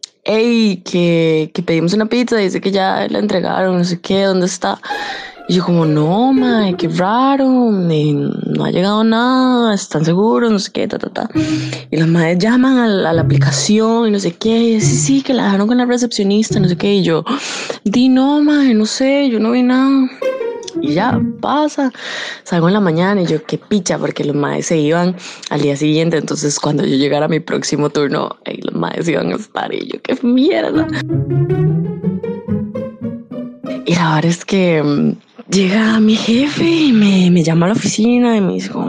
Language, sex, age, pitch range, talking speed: Spanish, female, 20-39, 160-230 Hz, 200 wpm